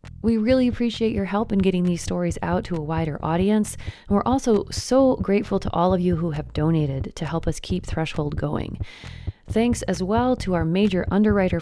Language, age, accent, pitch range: English, 30-49, American, 165-225 Hz